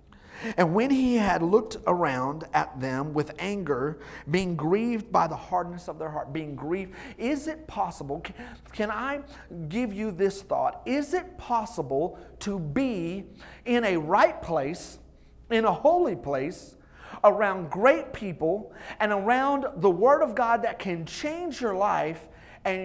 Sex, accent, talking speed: male, American, 150 wpm